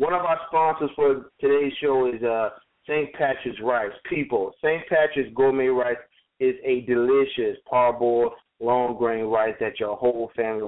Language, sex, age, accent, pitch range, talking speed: English, male, 40-59, American, 120-145 Hz, 155 wpm